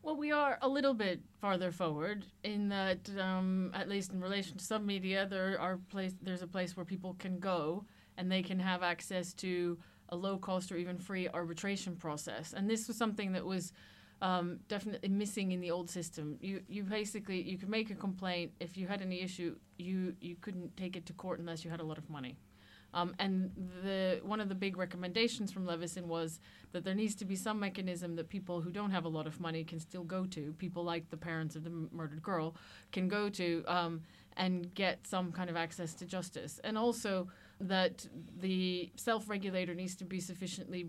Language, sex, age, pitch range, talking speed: English, female, 30-49, 170-195 Hz, 210 wpm